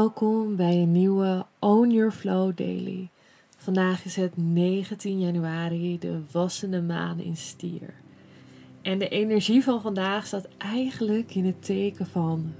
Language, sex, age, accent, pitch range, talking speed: Dutch, female, 20-39, Dutch, 170-205 Hz, 140 wpm